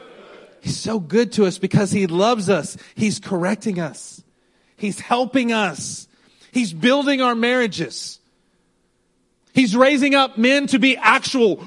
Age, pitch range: 40-59, 190-260 Hz